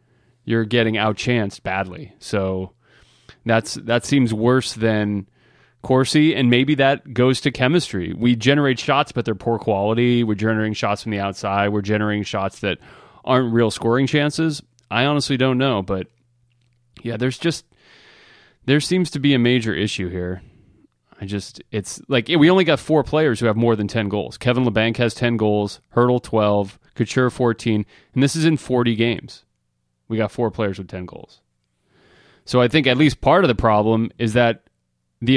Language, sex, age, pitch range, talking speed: English, male, 30-49, 110-135 Hz, 175 wpm